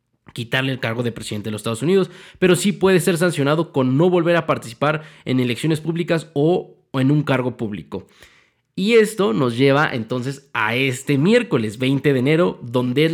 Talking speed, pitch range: 185 wpm, 125-170 Hz